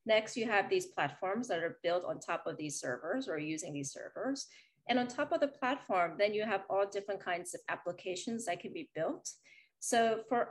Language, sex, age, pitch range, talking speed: English, female, 30-49, 180-245 Hz, 210 wpm